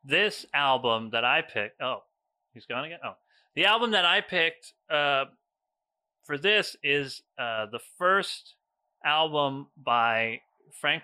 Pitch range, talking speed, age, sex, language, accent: 110-140 Hz, 140 wpm, 30-49, male, English, American